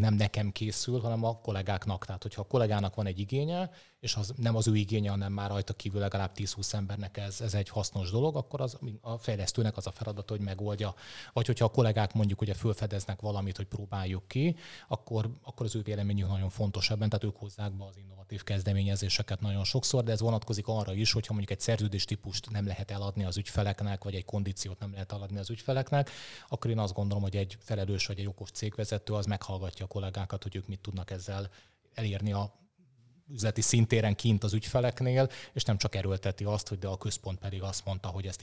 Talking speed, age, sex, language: 205 wpm, 20-39, male, Hungarian